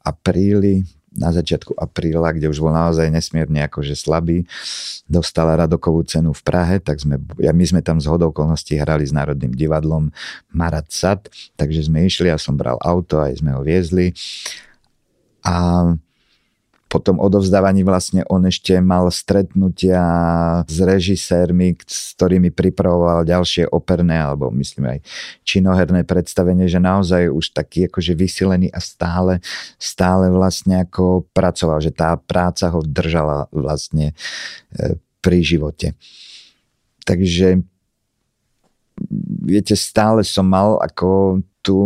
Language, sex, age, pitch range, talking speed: Slovak, male, 50-69, 80-90 Hz, 130 wpm